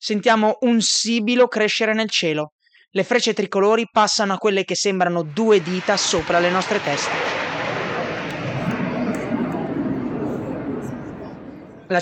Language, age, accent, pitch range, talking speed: Italian, 20-39, native, 175-215 Hz, 105 wpm